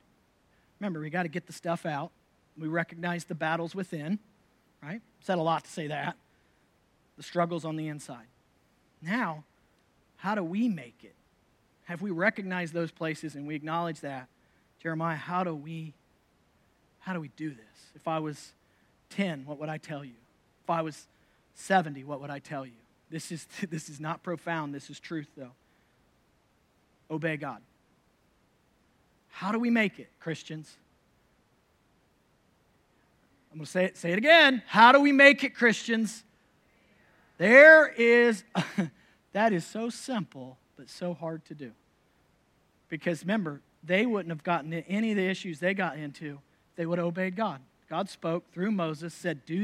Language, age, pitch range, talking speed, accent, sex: English, 40-59, 155-200 Hz, 160 wpm, American, male